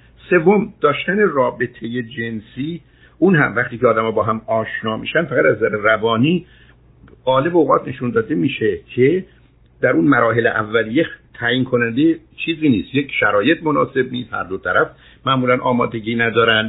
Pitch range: 110-140 Hz